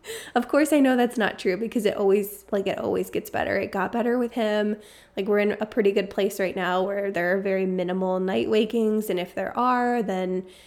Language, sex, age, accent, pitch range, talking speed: English, female, 20-39, American, 195-230 Hz, 230 wpm